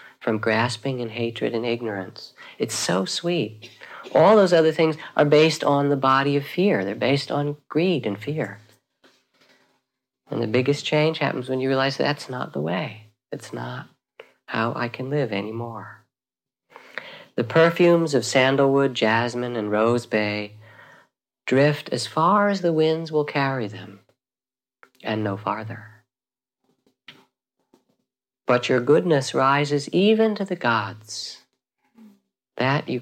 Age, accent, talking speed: 50-69, American, 135 wpm